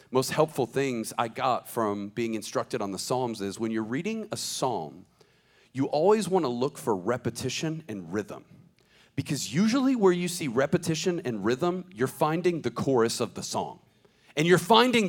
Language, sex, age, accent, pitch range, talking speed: English, male, 40-59, American, 125-190 Hz, 175 wpm